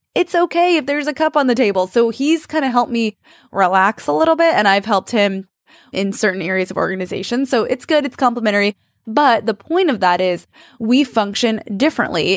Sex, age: female, 20-39